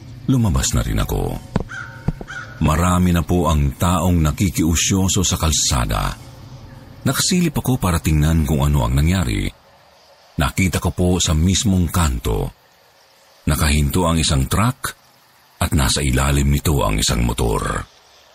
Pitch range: 75-105 Hz